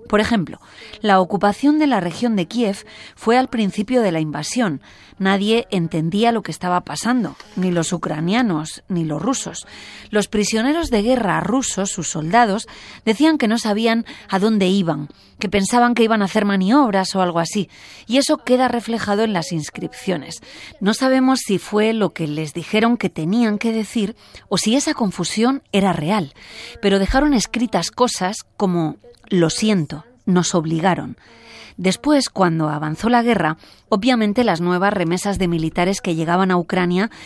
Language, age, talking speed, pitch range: Spanish, 30-49, 160 wpm, 175-230 Hz